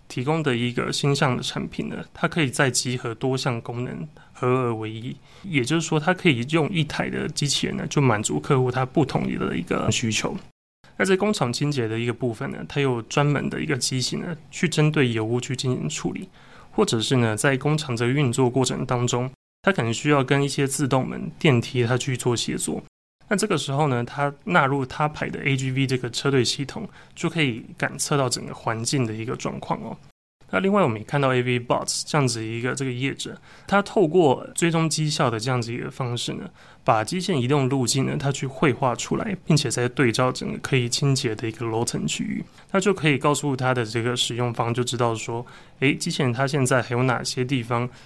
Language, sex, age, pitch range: Chinese, male, 20-39, 120-150 Hz